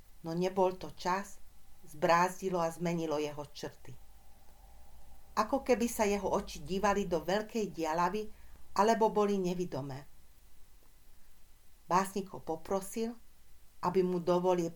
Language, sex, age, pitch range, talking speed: Hungarian, female, 40-59, 145-180 Hz, 110 wpm